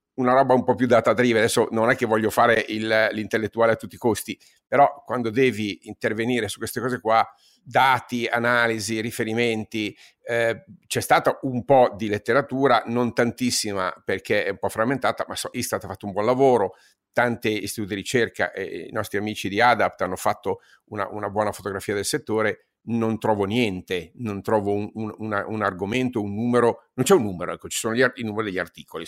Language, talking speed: Italian, 195 wpm